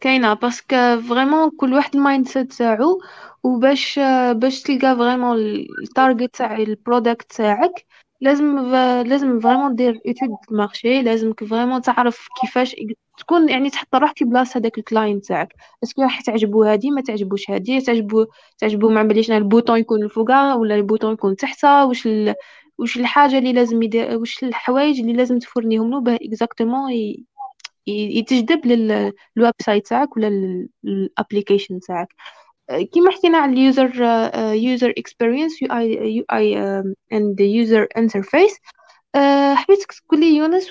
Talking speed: 135 wpm